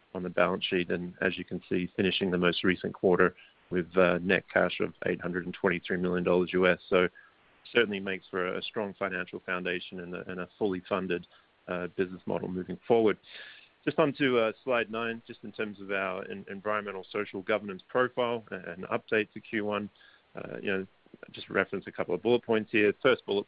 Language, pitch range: English, 90-100 Hz